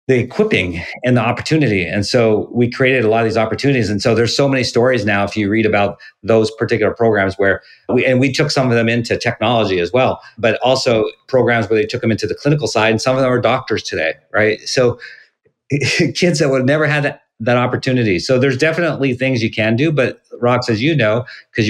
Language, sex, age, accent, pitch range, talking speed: English, male, 40-59, American, 115-145 Hz, 225 wpm